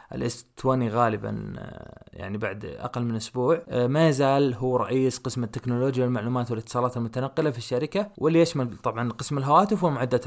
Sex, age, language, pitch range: male, 20-39, Arabic, 125-150 Hz